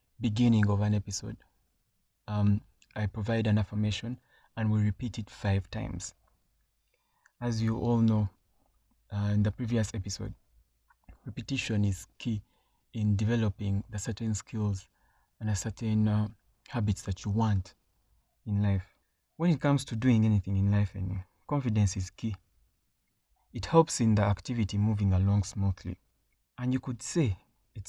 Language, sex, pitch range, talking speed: English, male, 100-115 Hz, 145 wpm